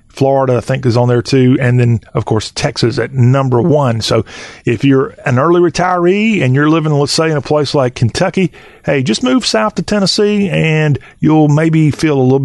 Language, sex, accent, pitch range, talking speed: English, male, American, 125-155 Hz, 205 wpm